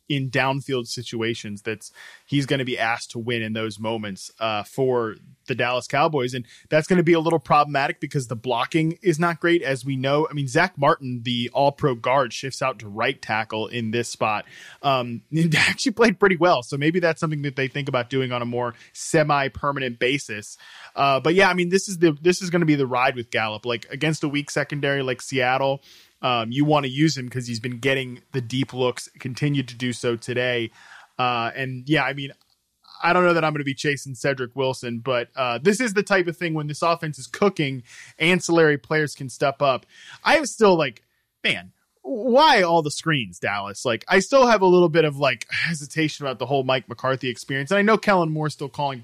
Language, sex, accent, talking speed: English, male, American, 220 wpm